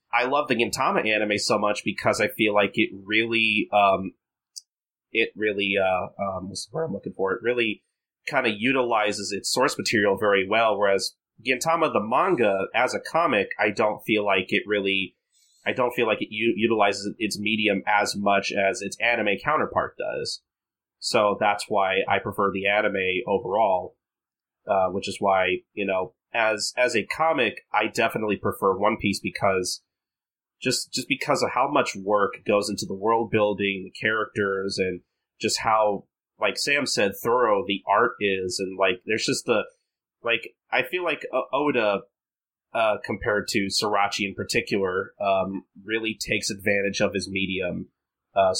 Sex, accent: male, American